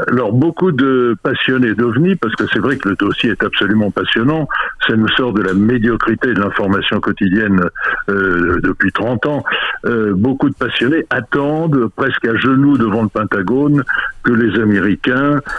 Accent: French